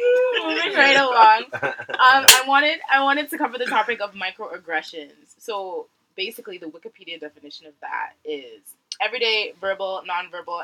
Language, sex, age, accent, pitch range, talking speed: English, female, 20-39, American, 165-255 Hz, 145 wpm